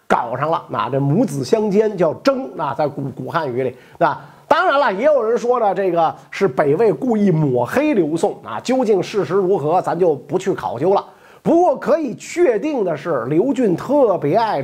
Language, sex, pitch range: Chinese, male, 185-285 Hz